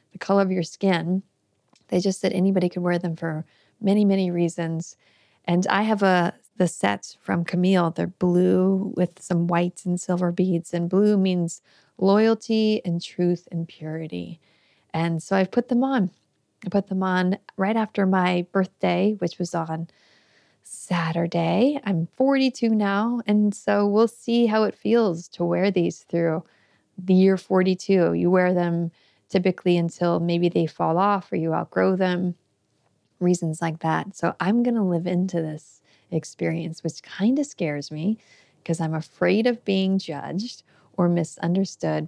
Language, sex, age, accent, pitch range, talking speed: English, female, 30-49, American, 170-195 Hz, 160 wpm